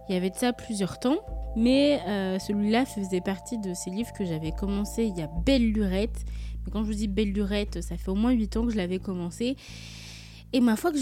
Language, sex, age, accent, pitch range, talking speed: French, female, 20-39, French, 185-245 Hz, 240 wpm